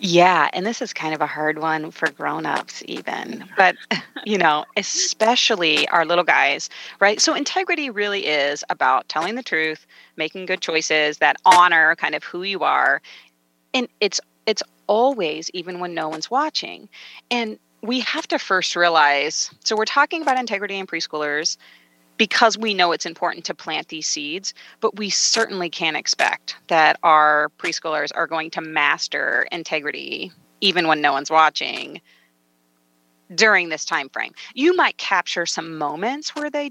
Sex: female